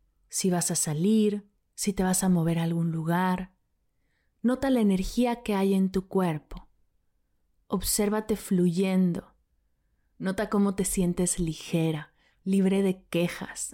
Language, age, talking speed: Spanish, 30-49, 130 wpm